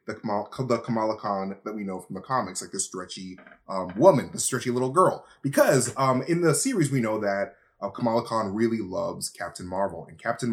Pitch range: 100-130 Hz